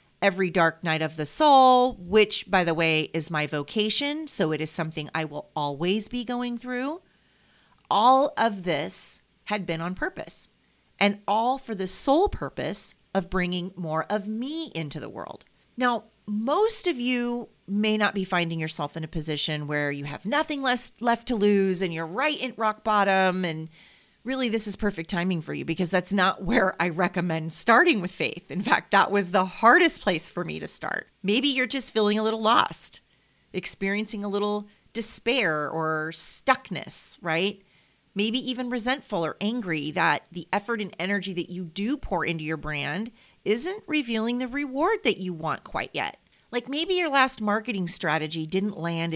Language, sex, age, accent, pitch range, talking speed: English, female, 30-49, American, 165-240 Hz, 175 wpm